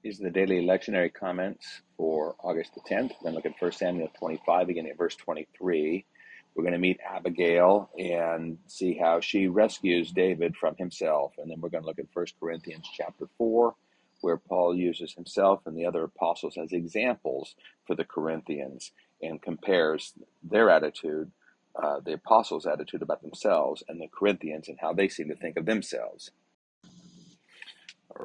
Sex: male